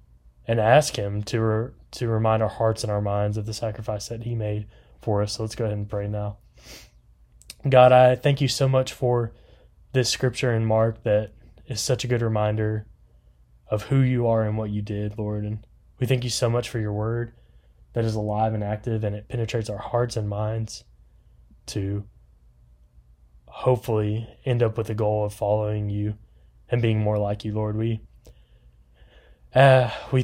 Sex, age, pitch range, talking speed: male, 20-39, 105-115 Hz, 185 wpm